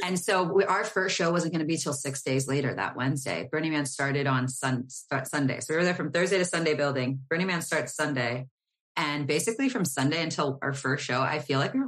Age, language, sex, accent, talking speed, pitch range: 30-49, English, female, American, 245 wpm, 140-180 Hz